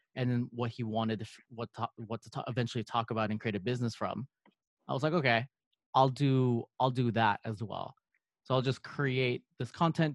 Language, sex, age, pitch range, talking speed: English, male, 20-39, 115-130 Hz, 215 wpm